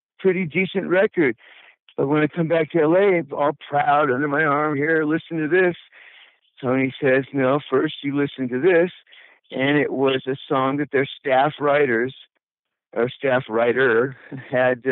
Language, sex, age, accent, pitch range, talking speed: English, male, 60-79, American, 135-170 Hz, 160 wpm